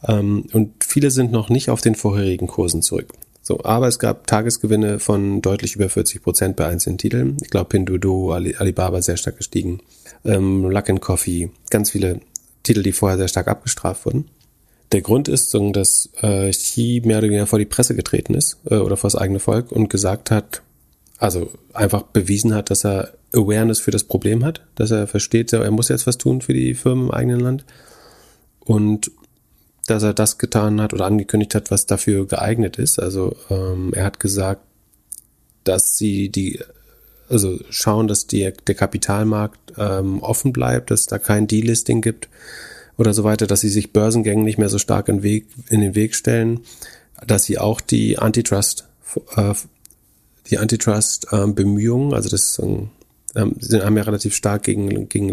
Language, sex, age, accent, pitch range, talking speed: German, male, 30-49, German, 100-115 Hz, 180 wpm